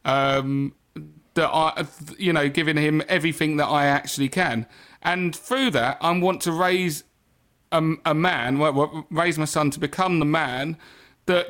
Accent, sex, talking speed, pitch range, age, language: British, male, 160 wpm, 155-185 Hz, 40-59, English